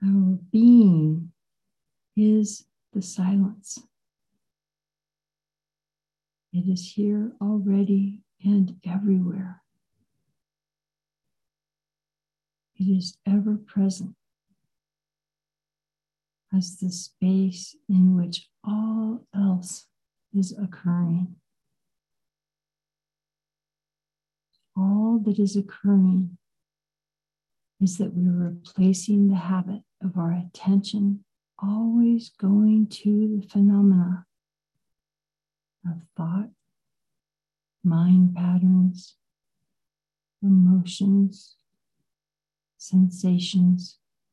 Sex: female